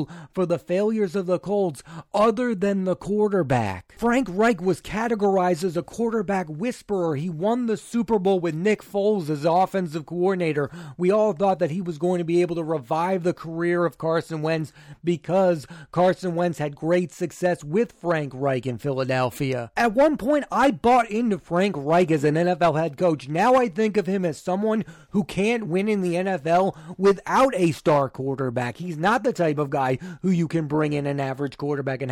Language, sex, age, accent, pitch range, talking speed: English, male, 30-49, American, 155-200 Hz, 190 wpm